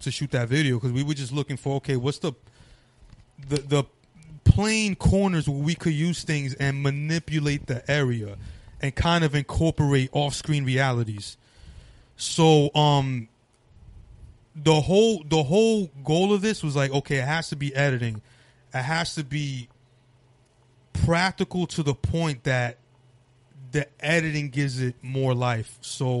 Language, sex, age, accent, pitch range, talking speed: English, male, 30-49, American, 120-145 Hz, 150 wpm